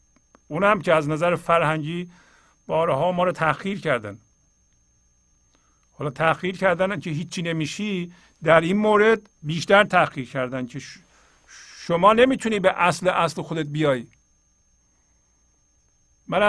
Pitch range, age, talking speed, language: 125-175 Hz, 50-69, 115 wpm, Persian